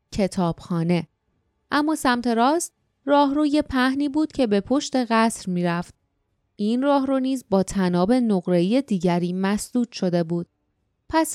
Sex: female